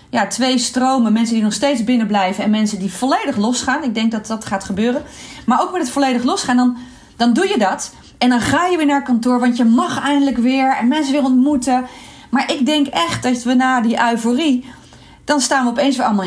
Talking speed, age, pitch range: 230 wpm, 30-49, 205-260 Hz